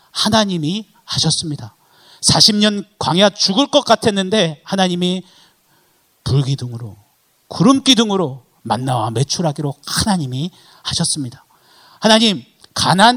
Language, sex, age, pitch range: Korean, male, 40-59, 125-190 Hz